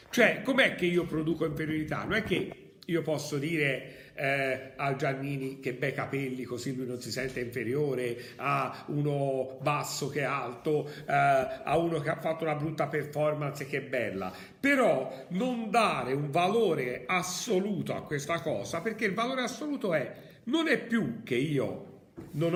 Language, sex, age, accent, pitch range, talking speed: Italian, male, 50-69, native, 140-215 Hz, 165 wpm